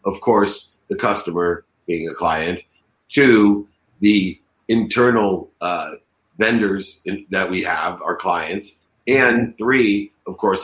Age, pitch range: 50-69, 95-120 Hz